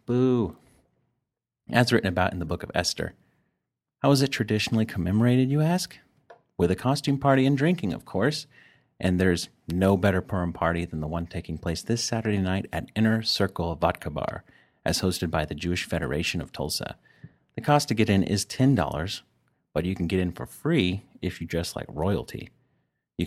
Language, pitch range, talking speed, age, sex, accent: English, 90-115 Hz, 185 wpm, 30-49, male, American